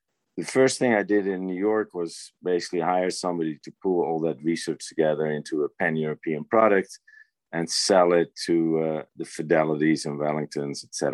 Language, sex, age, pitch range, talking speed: English, male, 50-69, 80-95 Hz, 170 wpm